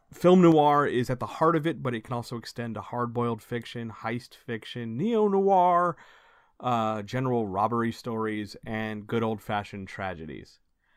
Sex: male